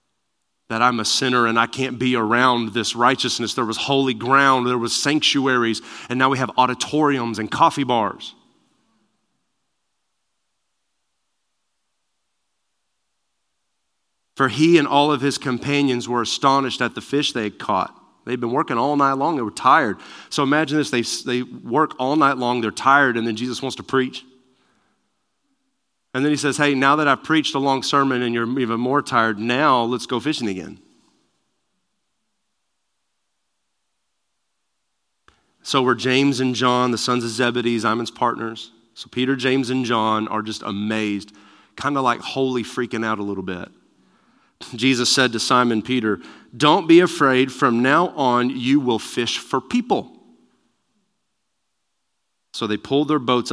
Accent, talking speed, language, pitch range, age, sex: American, 155 wpm, English, 115-135 Hz, 30-49, male